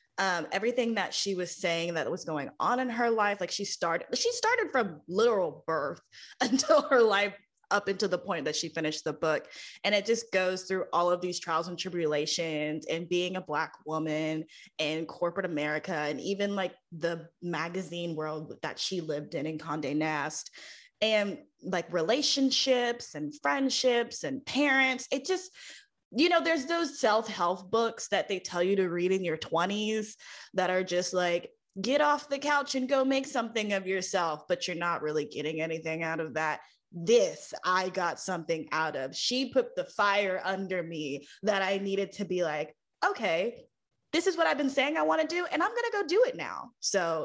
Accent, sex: American, female